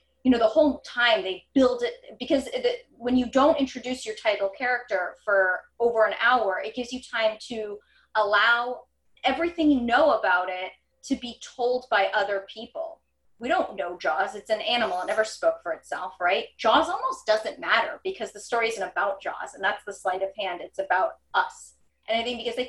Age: 20-39